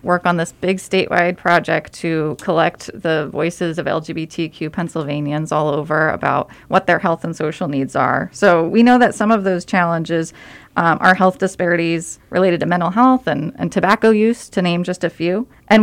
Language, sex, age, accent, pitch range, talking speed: English, female, 30-49, American, 175-215 Hz, 185 wpm